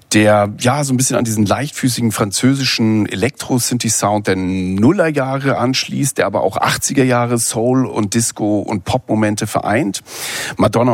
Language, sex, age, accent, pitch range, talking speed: German, male, 40-59, German, 105-135 Hz, 130 wpm